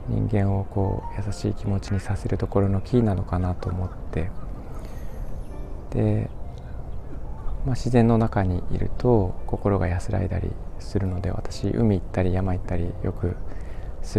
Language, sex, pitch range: Japanese, male, 90-110 Hz